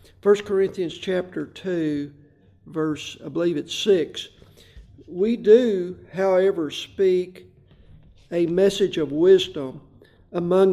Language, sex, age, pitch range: Swedish, male, 50-69, 150-195 Hz